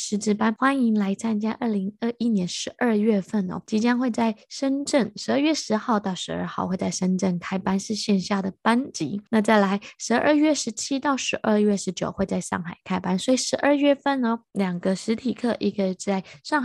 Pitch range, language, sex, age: 190-240 Hz, Chinese, female, 20-39